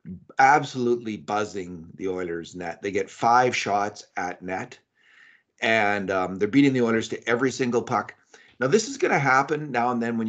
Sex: male